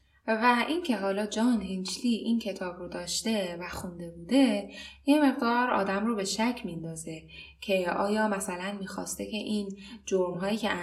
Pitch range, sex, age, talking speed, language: 190-255 Hz, female, 10-29, 150 wpm, Persian